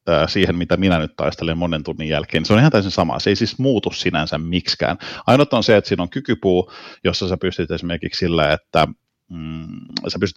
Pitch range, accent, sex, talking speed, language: 85-95 Hz, native, male, 210 wpm, Finnish